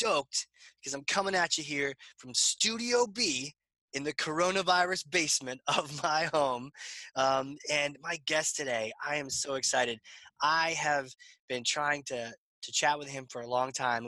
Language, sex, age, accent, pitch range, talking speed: English, male, 20-39, American, 130-175 Hz, 165 wpm